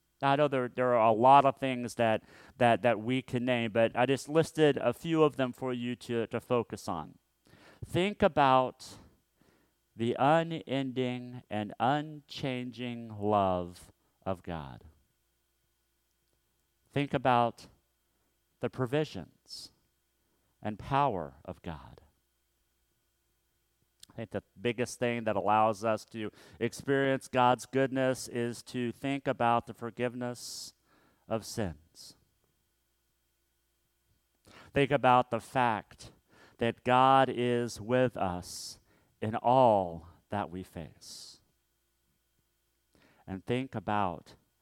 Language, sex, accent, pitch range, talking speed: English, male, American, 100-130 Hz, 110 wpm